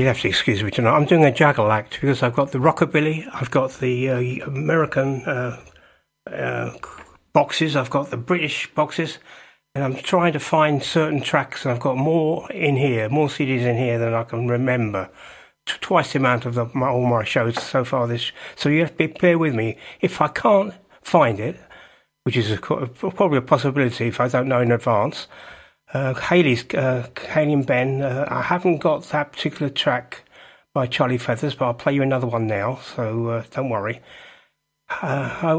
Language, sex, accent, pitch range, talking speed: English, male, British, 125-155 Hz, 195 wpm